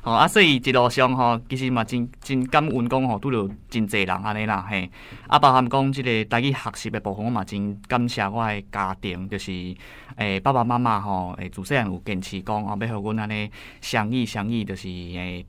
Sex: male